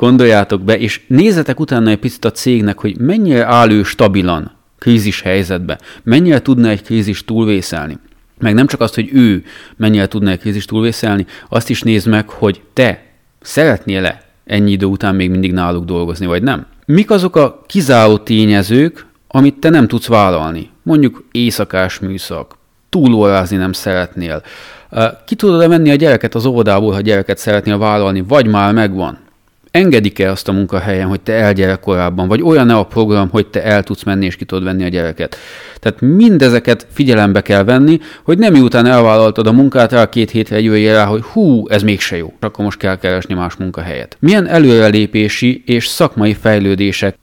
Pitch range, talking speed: 95-120 Hz, 170 wpm